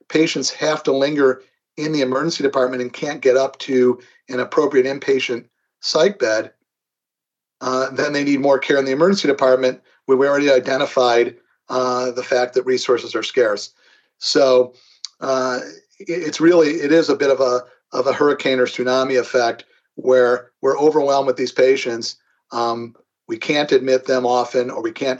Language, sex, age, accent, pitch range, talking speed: English, male, 40-59, American, 125-155 Hz, 165 wpm